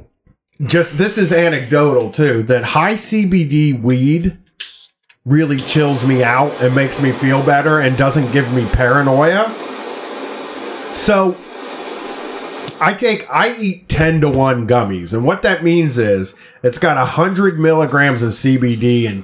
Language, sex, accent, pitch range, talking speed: English, male, American, 115-155 Hz, 135 wpm